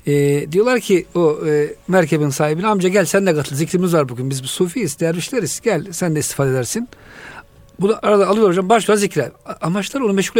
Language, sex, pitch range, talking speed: Turkish, male, 160-220 Hz, 190 wpm